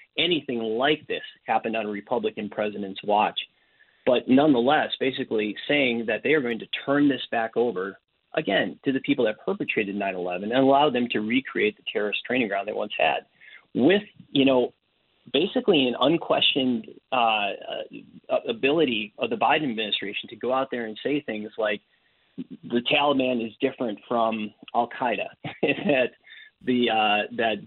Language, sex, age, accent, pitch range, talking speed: English, male, 30-49, American, 110-135 Hz, 150 wpm